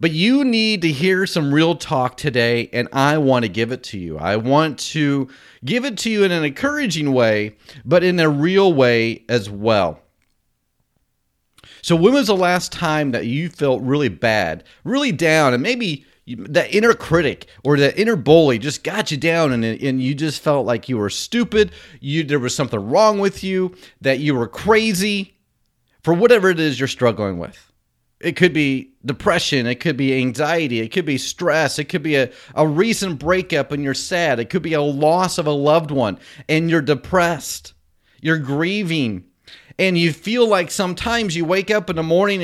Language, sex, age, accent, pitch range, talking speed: English, male, 30-49, American, 130-185 Hz, 190 wpm